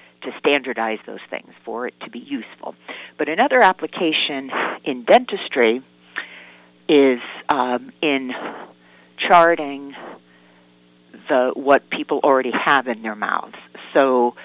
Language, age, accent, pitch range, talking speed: English, 50-69, American, 120-145 Hz, 110 wpm